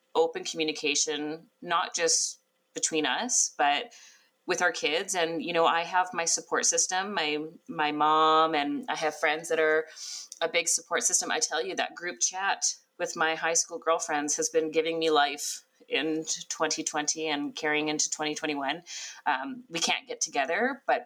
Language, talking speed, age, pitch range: English, 170 wpm, 30-49, 155-200 Hz